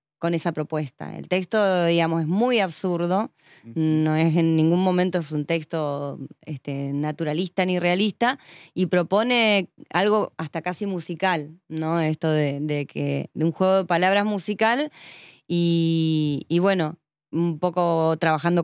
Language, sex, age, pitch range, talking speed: English, female, 20-39, 160-200 Hz, 140 wpm